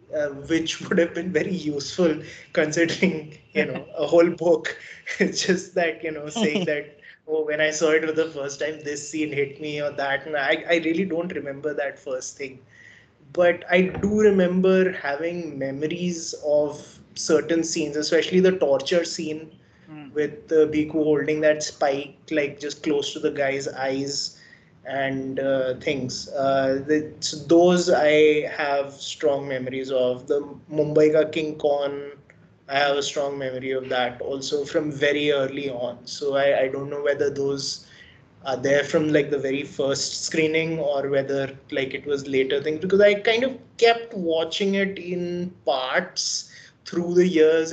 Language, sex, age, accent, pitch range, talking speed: English, male, 20-39, Indian, 140-165 Hz, 165 wpm